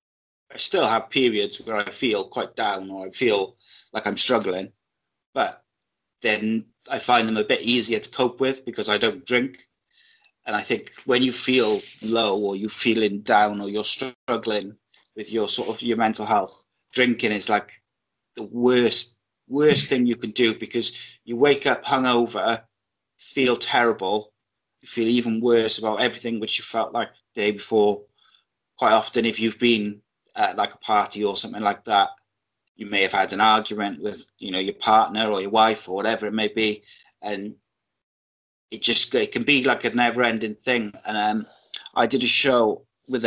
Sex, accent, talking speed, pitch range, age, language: male, British, 180 wpm, 105-120 Hz, 30-49, English